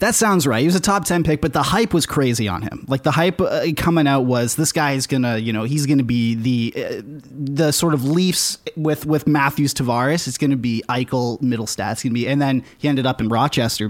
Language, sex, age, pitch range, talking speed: English, male, 30-49, 125-170 Hz, 260 wpm